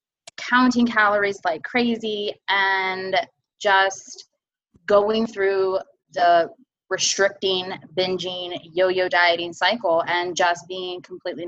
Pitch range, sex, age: 175-205 Hz, female, 20-39